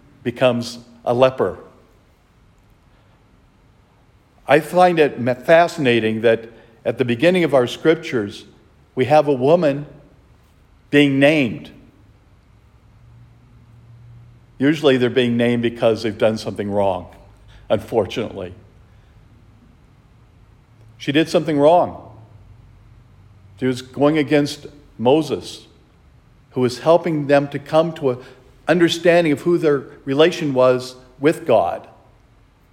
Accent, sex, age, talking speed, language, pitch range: American, male, 50-69, 100 wpm, English, 105-130 Hz